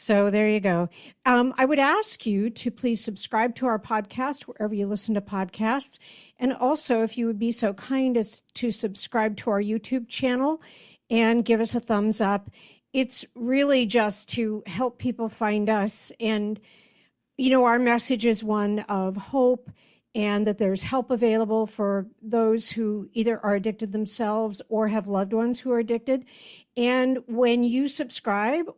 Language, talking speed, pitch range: English, 170 wpm, 210-250 Hz